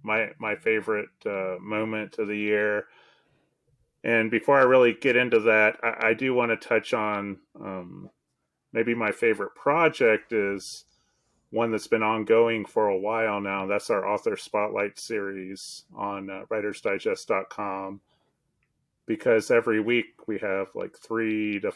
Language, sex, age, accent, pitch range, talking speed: English, male, 30-49, American, 105-125 Hz, 145 wpm